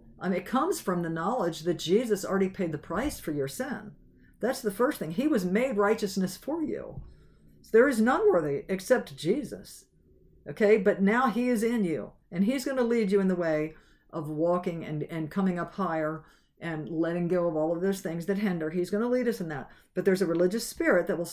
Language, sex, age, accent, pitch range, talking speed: English, female, 50-69, American, 170-215 Hz, 220 wpm